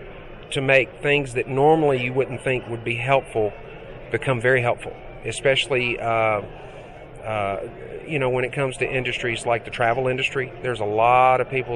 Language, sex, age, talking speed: English, male, 40-59, 170 wpm